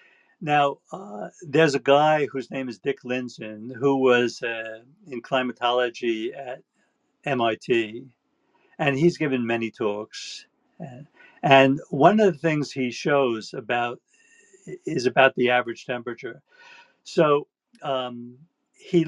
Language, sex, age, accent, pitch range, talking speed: English, male, 60-79, American, 125-170 Hz, 125 wpm